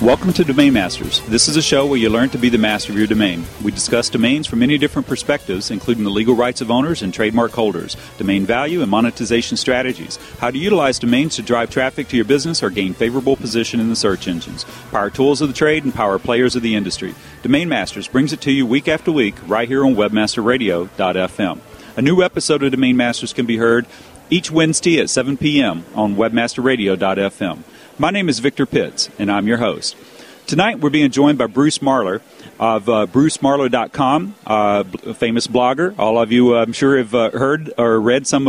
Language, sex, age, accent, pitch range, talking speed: English, male, 40-59, American, 115-135 Hz, 205 wpm